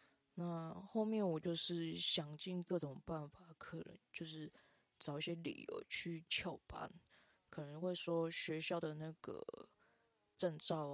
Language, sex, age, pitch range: Chinese, female, 20-39, 155-180 Hz